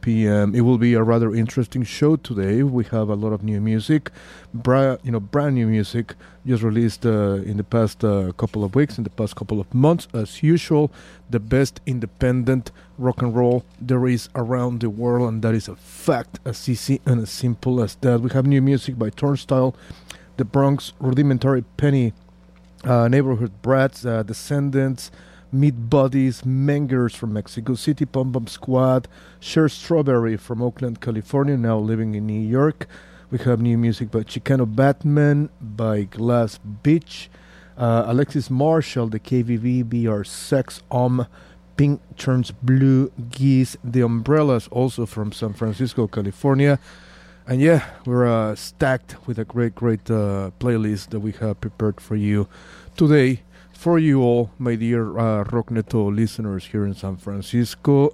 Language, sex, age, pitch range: English, male, 30-49, 110-130 Hz